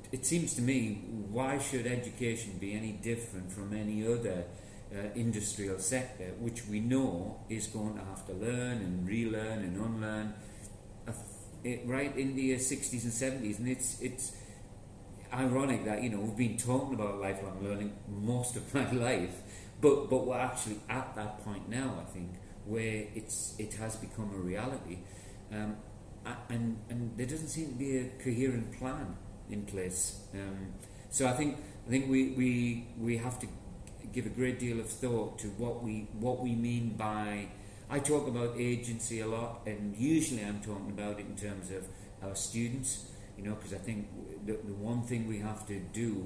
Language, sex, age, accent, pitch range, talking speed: English, male, 40-59, British, 100-125 Hz, 180 wpm